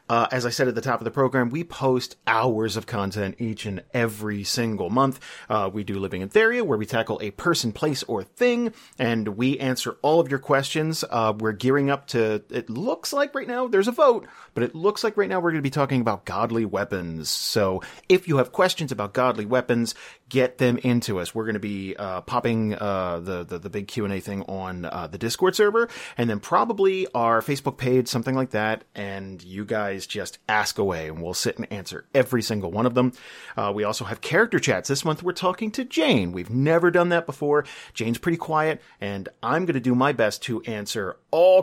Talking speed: 220 wpm